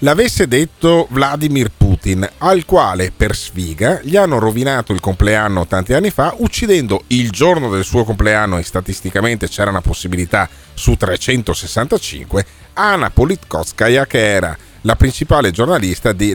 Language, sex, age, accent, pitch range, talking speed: Italian, male, 40-59, native, 100-145 Hz, 135 wpm